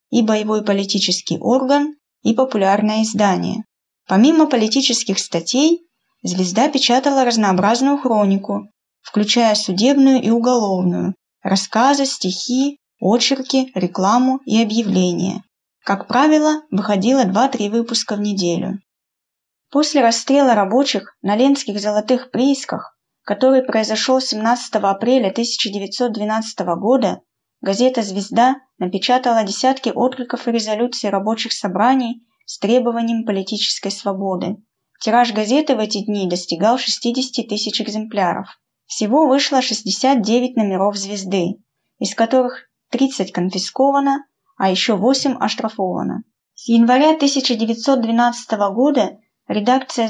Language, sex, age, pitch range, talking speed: Russian, female, 20-39, 200-260 Hz, 100 wpm